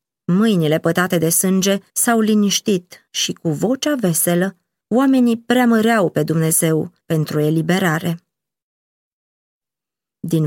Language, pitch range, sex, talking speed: Romanian, 165-210 Hz, female, 95 wpm